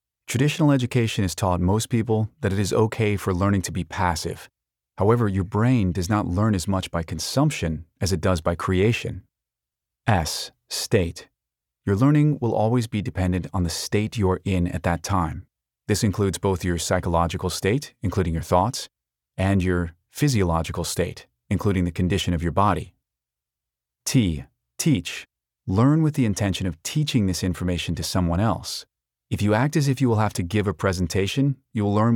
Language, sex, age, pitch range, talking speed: English, male, 30-49, 85-110 Hz, 175 wpm